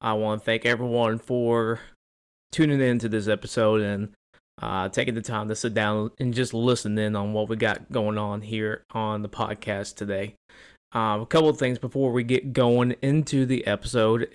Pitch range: 110-135 Hz